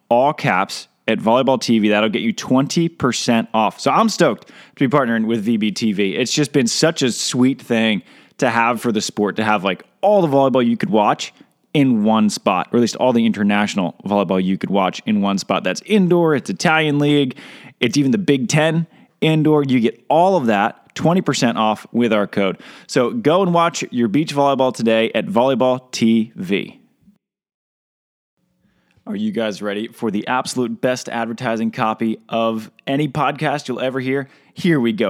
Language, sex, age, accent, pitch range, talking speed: English, male, 20-39, American, 115-165 Hz, 185 wpm